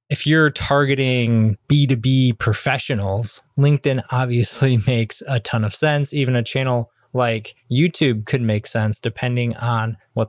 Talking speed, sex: 135 wpm, male